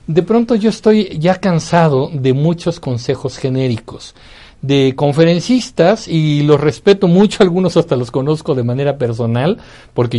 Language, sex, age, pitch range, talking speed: Spanish, male, 60-79, 130-195 Hz, 140 wpm